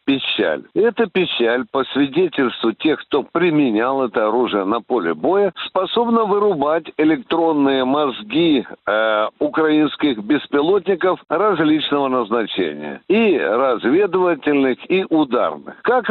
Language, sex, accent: Russian, male, native